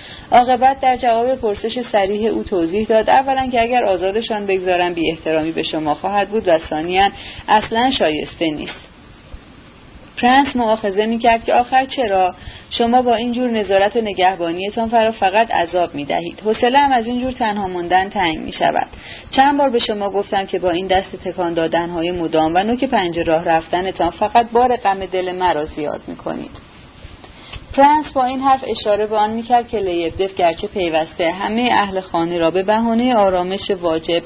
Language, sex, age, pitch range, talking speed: Persian, female, 30-49, 170-225 Hz, 165 wpm